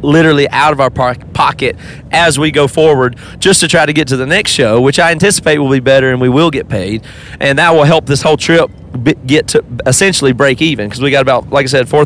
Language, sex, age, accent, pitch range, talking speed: English, male, 30-49, American, 135-165 Hz, 240 wpm